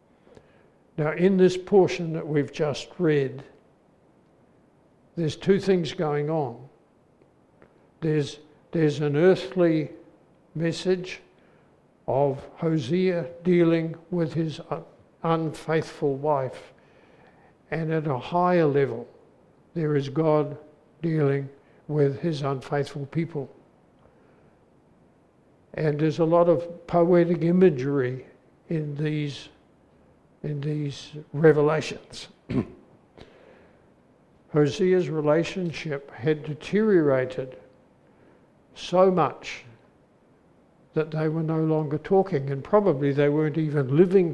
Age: 60-79